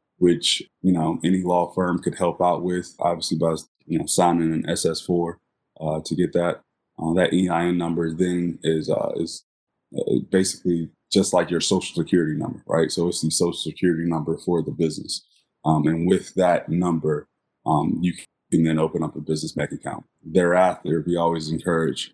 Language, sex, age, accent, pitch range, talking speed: English, male, 20-39, American, 80-95 Hz, 175 wpm